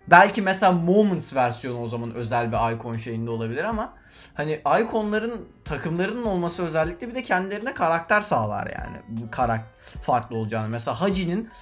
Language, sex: Turkish, male